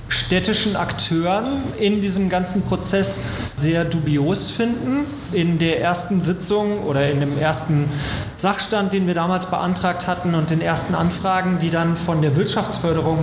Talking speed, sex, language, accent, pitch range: 145 wpm, male, German, German, 155-200 Hz